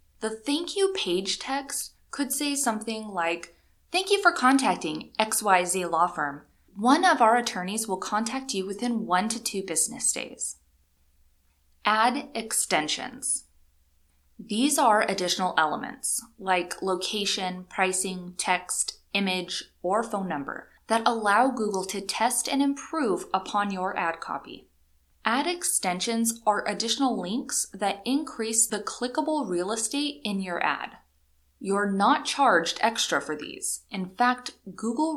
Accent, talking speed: American, 130 wpm